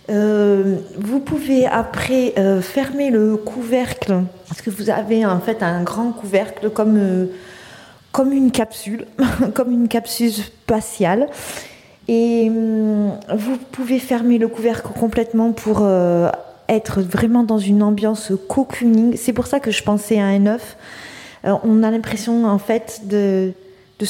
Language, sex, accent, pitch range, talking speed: French, female, French, 195-225 Hz, 145 wpm